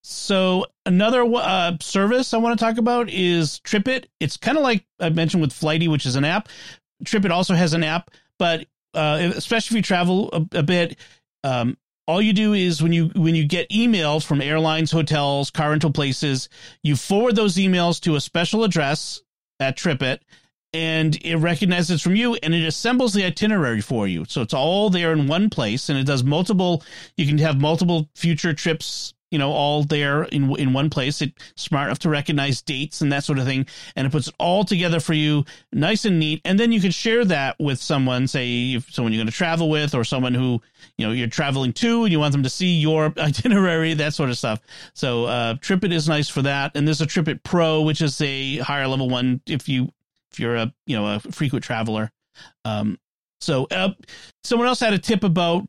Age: 40-59